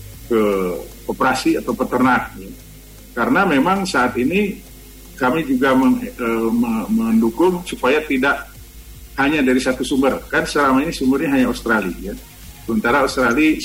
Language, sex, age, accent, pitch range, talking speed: Indonesian, male, 50-69, native, 115-170 Hz, 110 wpm